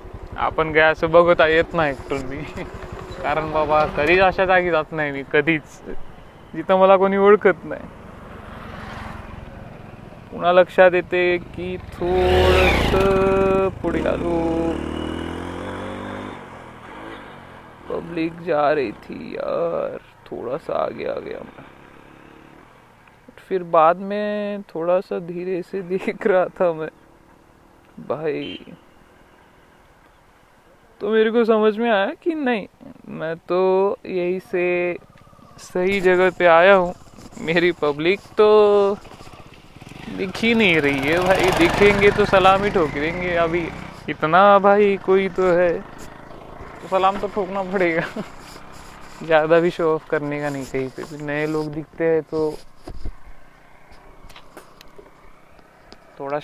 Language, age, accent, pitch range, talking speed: Marathi, 30-49, native, 150-190 Hz, 90 wpm